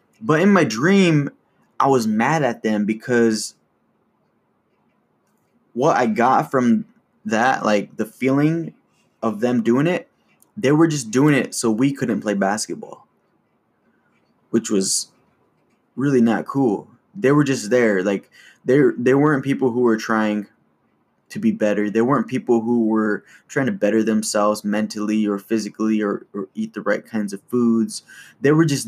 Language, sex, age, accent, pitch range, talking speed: English, male, 20-39, American, 105-135 Hz, 155 wpm